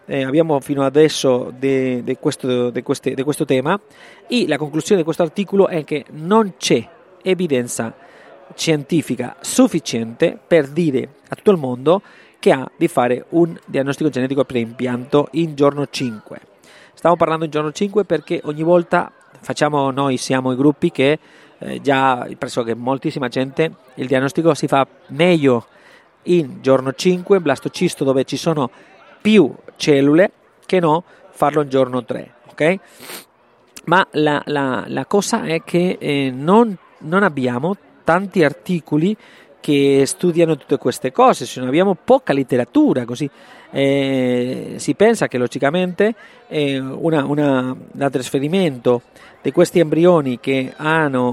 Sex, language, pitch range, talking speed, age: male, Italian, 135-170 Hz, 135 wpm, 40-59